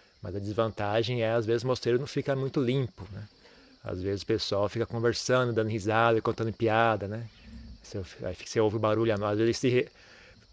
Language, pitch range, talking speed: Portuguese, 105-120 Hz, 195 wpm